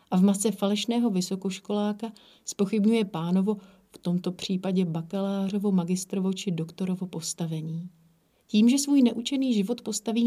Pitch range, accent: 185-220 Hz, native